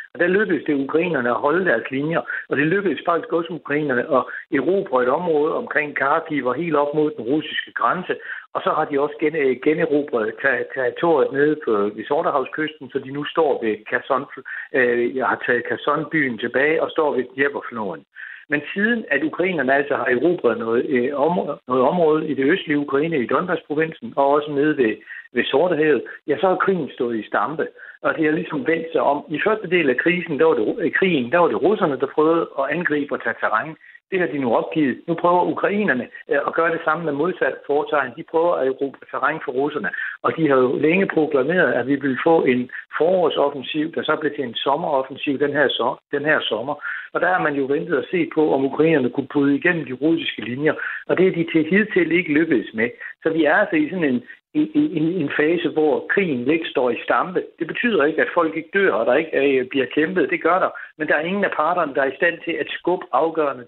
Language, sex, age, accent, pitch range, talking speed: Danish, male, 60-79, native, 140-170 Hz, 215 wpm